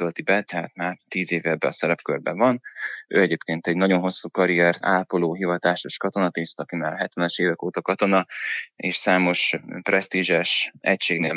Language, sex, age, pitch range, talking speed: Hungarian, male, 20-39, 85-95 Hz, 150 wpm